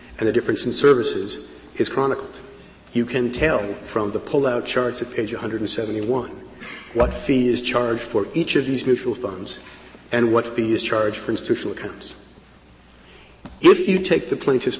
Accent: American